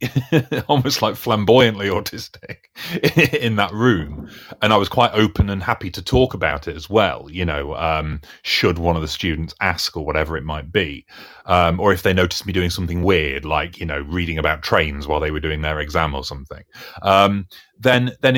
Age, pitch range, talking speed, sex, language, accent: 30-49, 85-120 Hz, 195 wpm, male, English, British